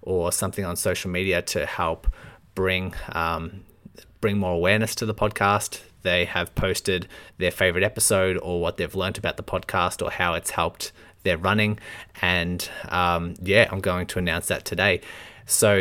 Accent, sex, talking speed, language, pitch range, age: Australian, male, 165 wpm, English, 90-105 Hz, 30-49